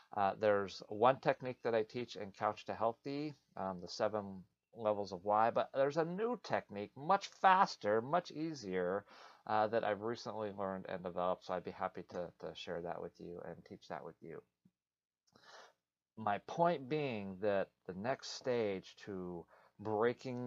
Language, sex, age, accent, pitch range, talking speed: English, male, 30-49, American, 95-115 Hz, 165 wpm